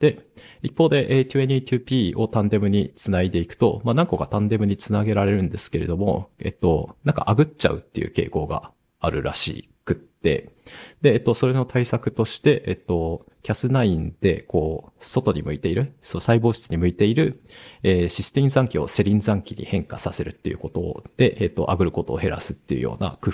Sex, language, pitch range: male, Japanese, 90-125 Hz